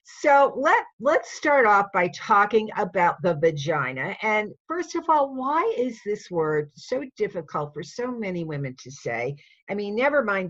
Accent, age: American, 50-69